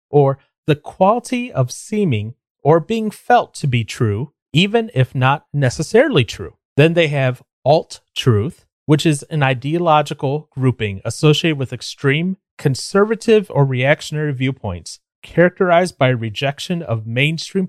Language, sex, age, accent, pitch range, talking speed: English, male, 30-49, American, 125-165 Hz, 125 wpm